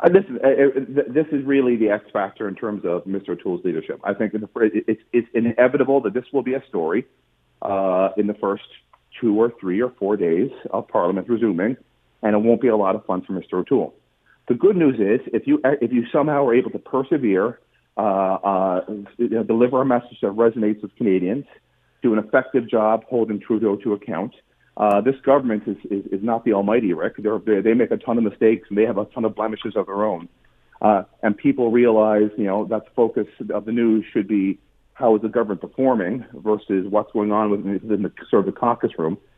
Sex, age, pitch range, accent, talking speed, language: male, 40-59, 105-120 Hz, American, 210 wpm, English